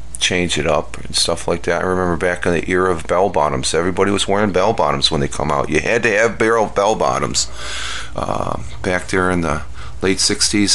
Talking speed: 220 wpm